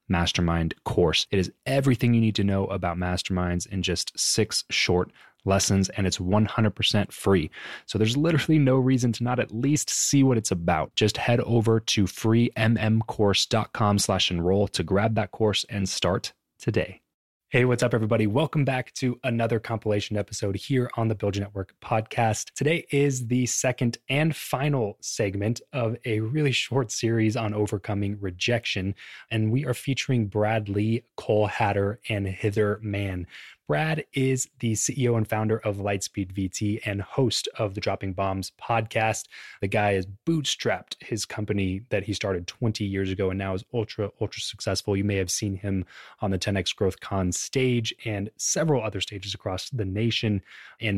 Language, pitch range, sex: English, 100-120 Hz, male